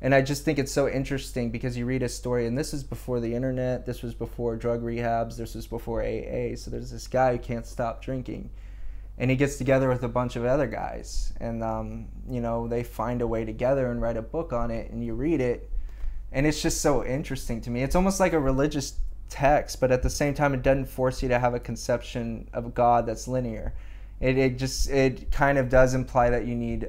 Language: English